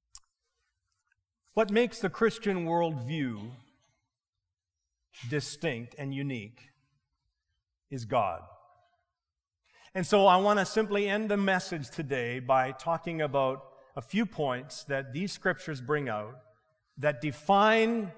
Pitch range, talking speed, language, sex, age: 135-200 Hz, 110 wpm, English, male, 40-59